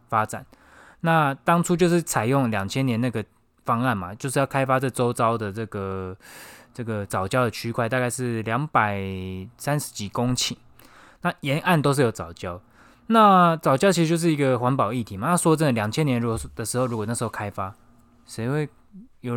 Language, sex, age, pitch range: Chinese, male, 20-39, 110-140 Hz